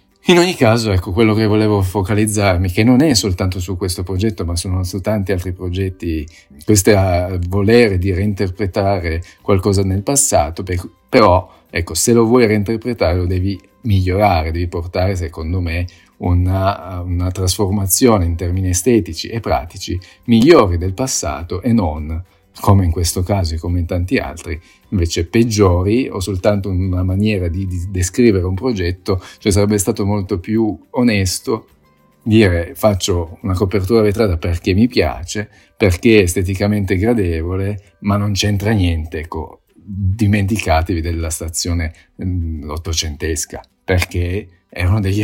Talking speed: 140 wpm